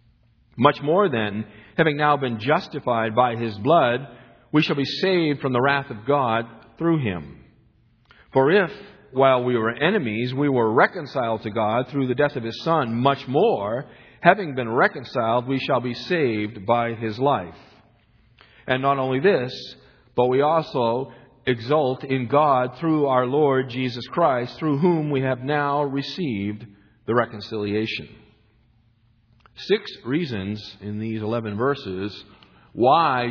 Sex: male